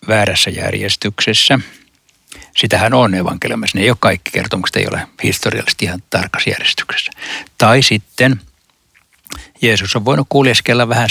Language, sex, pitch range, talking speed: Finnish, male, 95-110 Hz, 125 wpm